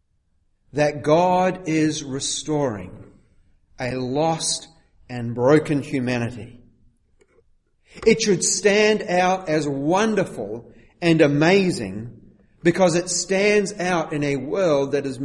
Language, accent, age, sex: English, Australian, 40-59, male